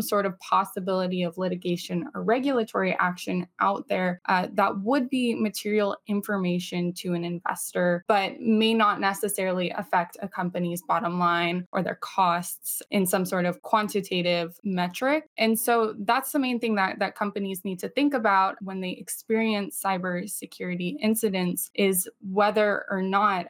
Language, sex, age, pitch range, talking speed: English, female, 10-29, 175-215 Hz, 150 wpm